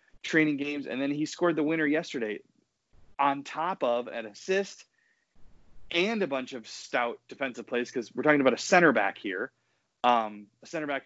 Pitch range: 115-150 Hz